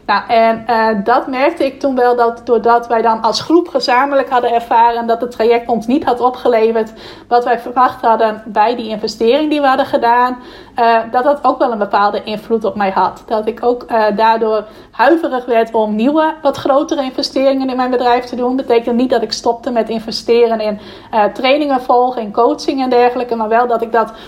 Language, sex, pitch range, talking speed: Dutch, female, 230-260 Hz, 210 wpm